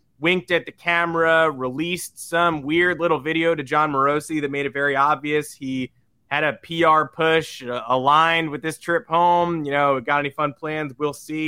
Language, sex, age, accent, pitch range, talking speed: English, male, 20-39, American, 135-175 Hz, 185 wpm